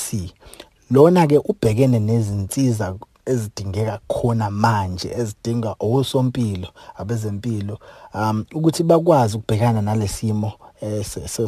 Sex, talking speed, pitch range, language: male, 105 wpm, 110-135 Hz, English